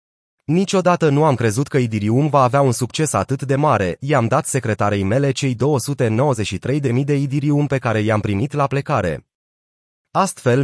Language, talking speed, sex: Romanian, 160 wpm, male